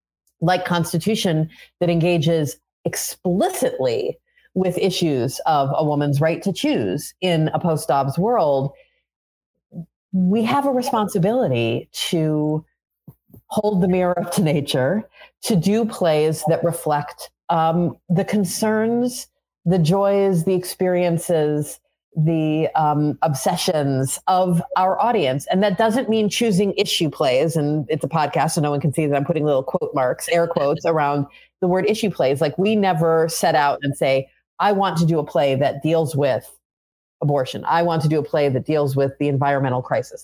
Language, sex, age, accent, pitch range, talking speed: English, female, 40-59, American, 150-190 Hz, 155 wpm